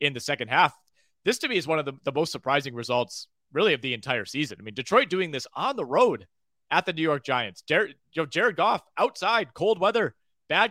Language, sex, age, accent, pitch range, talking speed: English, male, 30-49, American, 125-160 Hz, 225 wpm